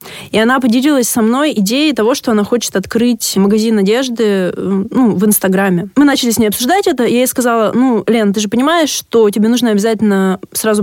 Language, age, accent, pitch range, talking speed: Russian, 20-39, native, 205-260 Hz, 200 wpm